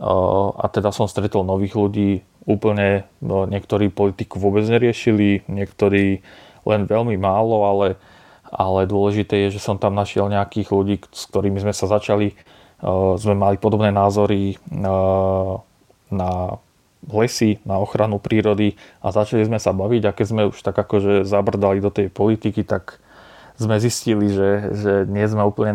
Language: Slovak